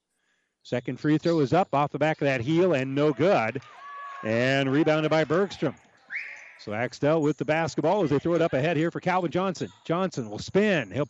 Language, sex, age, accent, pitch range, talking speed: English, male, 40-59, American, 145-180 Hz, 200 wpm